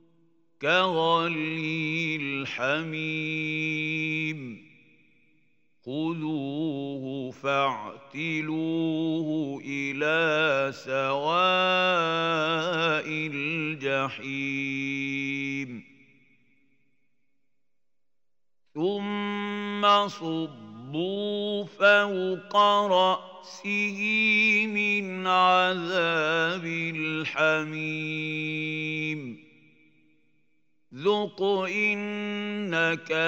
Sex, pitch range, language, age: male, 140-190 Hz, Arabic, 50-69